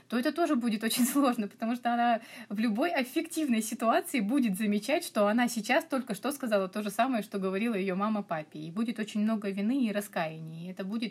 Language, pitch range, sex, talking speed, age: Russian, 205-255 Hz, female, 210 wpm, 30-49